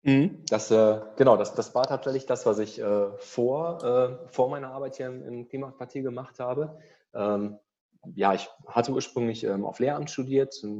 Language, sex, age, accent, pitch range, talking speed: German, male, 30-49, German, 100-130 Hz, 170 wpm